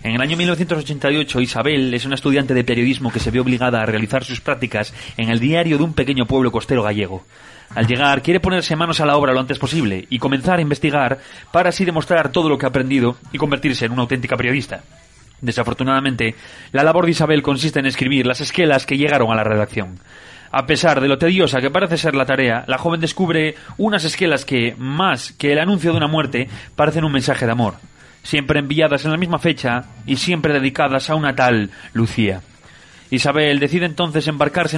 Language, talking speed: Spanish, 200 wpm